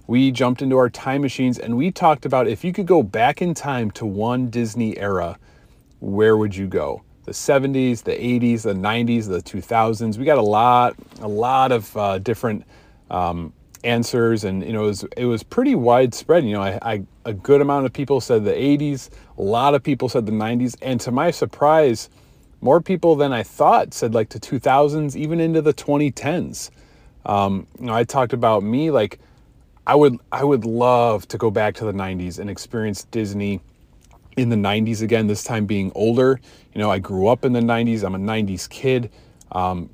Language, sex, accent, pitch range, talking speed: English, male, American, 105-130 Hz, 200 wpm